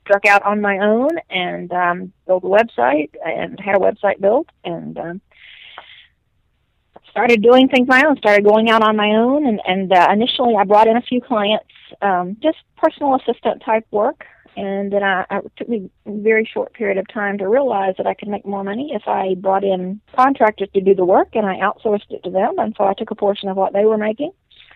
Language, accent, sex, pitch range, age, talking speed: English, American, female, 185-225 Hz, 40-59, 220 wpm